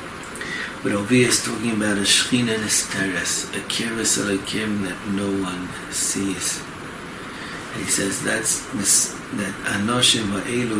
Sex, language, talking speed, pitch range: male, English, 135 wpm, 100-120 Hz